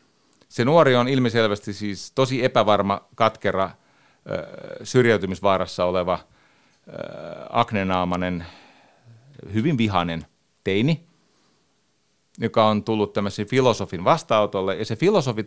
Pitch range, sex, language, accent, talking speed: 95-125 Hz, male, Finnish, native, 90 wpm